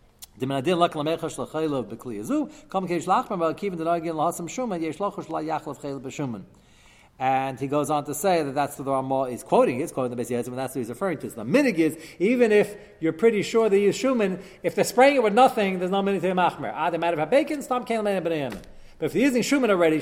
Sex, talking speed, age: male, 175 wpm, 40-59